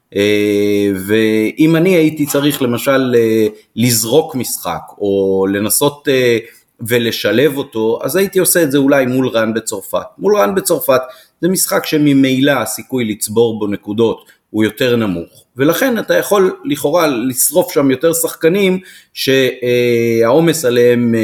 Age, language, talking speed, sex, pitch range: 30-49, Hebrew, 130 wpm, male, 110-145 Hz